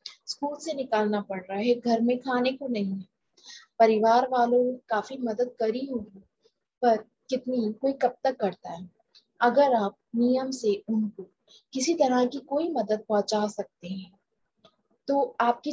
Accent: native